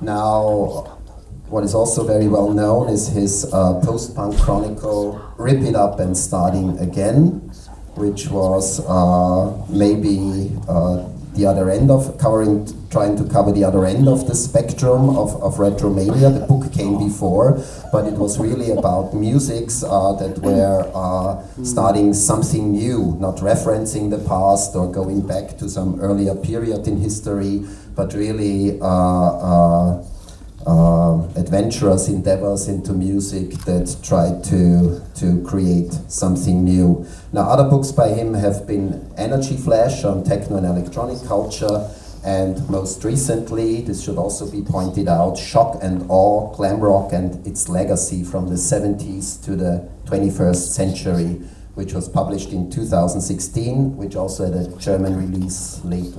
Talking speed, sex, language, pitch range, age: 145 wpm, male, German, 90-105 Hz, 30-49